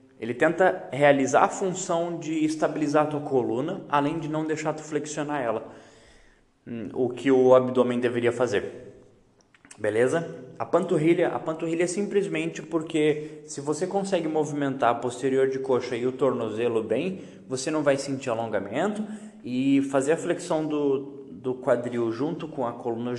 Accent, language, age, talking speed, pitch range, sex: Brazilian, Portuguese, 20-39, 150 wpm, 120-165 Hz, male